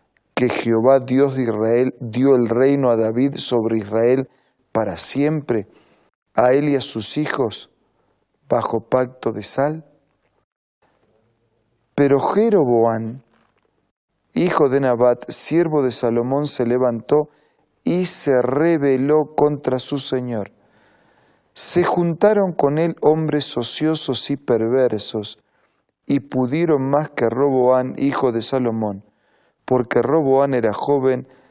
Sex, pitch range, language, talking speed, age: male, 115-150 Hz, Spanish, 115 wpm, 40-59